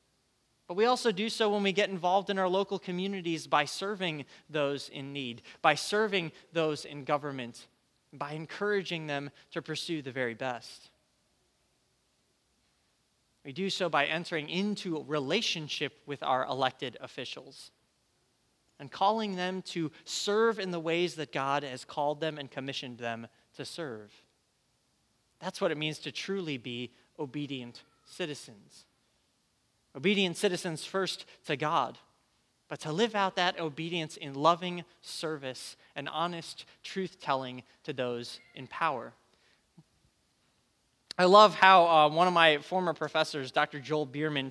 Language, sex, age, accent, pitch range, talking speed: English, male, 30-49, American, 140-185 Hz, 140 wpm